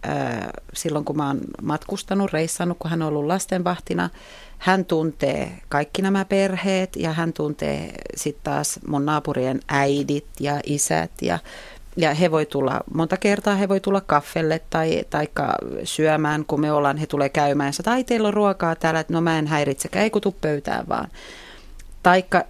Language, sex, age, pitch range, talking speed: Finnish, female, 40-59, 145-175 Hz, 160 wpm